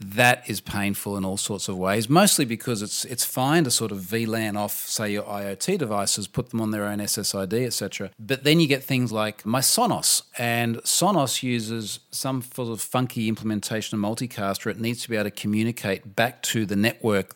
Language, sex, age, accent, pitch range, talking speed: English, male, 40-59, Australian, 100-125 Hz, 205 wpm